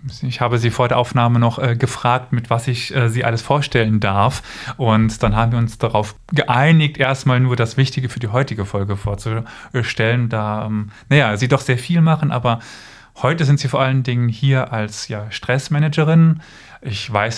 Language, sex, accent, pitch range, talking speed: German, male, German, 115-140 Hz, 185 wpm